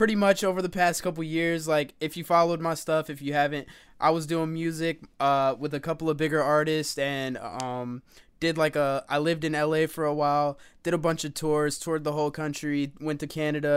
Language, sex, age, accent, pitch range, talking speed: English, male, 20-39, American, 135-160 Hz, 220 wpm